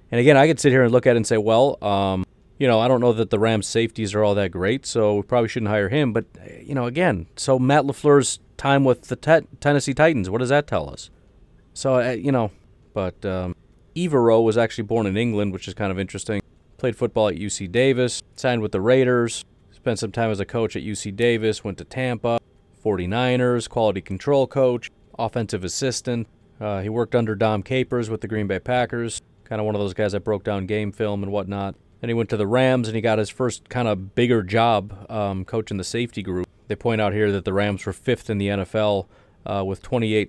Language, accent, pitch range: English, American, 100-125 Hz